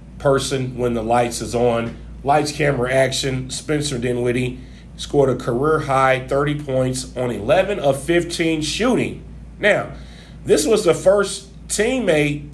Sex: male